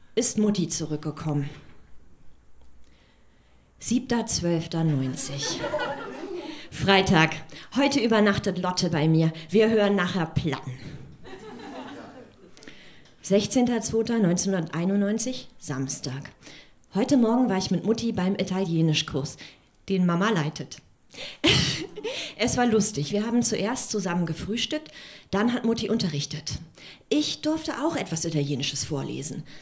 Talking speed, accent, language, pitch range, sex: 90 wpm, German, German, 150-220 Hz, female